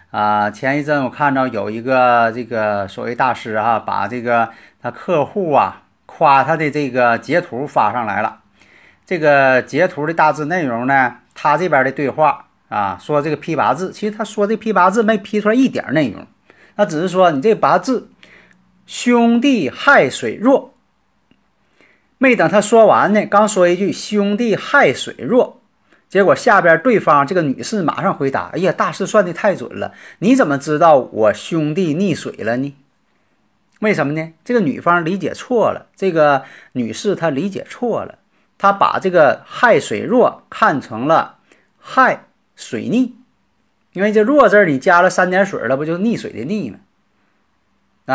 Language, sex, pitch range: Chinese, male, 140-215 Hz